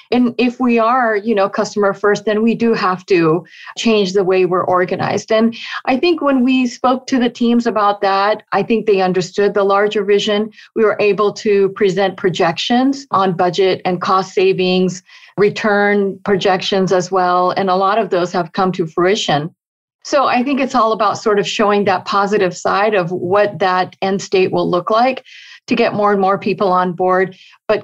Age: 40-59